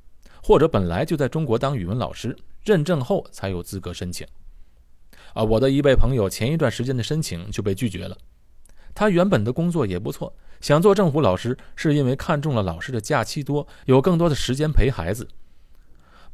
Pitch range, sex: 90-145 Hz, male